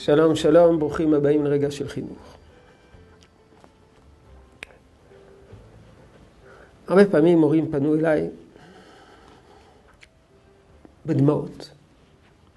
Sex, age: male, 50-69